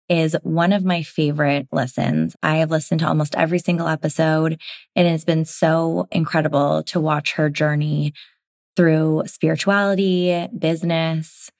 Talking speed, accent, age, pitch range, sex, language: 135 wpm, American, 20-39, 150-175 Hz, female, English